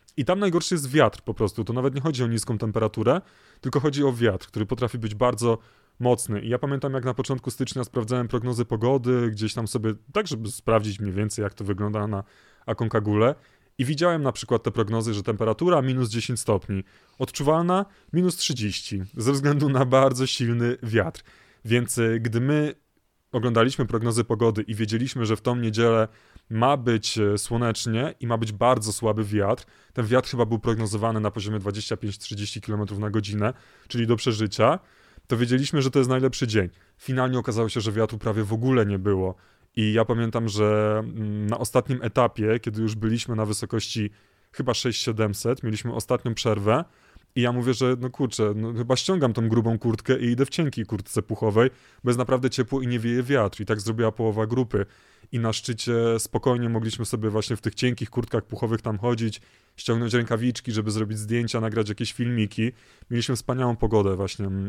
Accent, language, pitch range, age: native, Polish, 110-125 Hz, 30-49